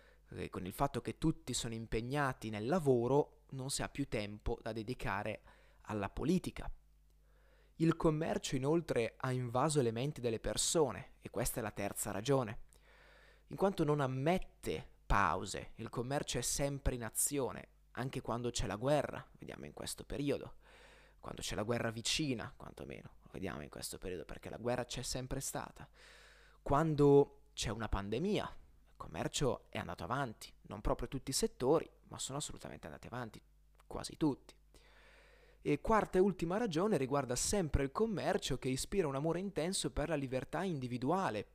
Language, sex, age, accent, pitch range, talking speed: Italian, male, 20-39, native, 115-155 Hz, 155 wpm